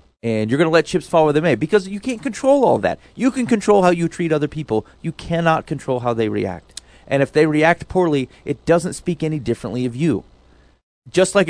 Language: English